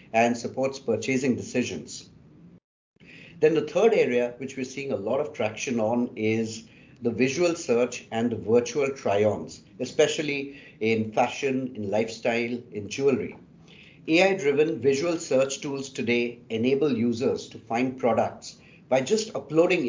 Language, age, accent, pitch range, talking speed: English, 50-69, Indian, 115-140 Hz, 135 wpm